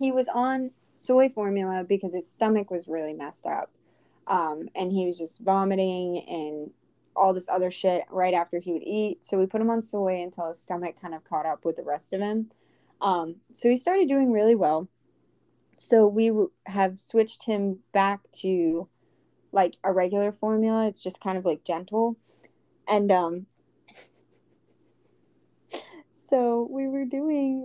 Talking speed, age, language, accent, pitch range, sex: 165 wpm, 20-39, English, American, 185-230 Hz, female